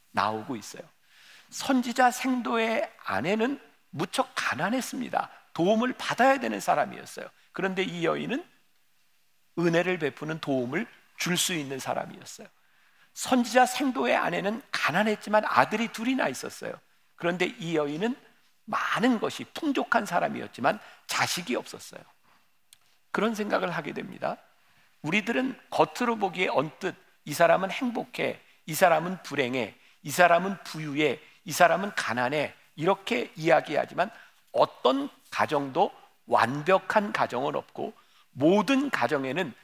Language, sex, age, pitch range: Korean, male, 50-69, 155-240 Hz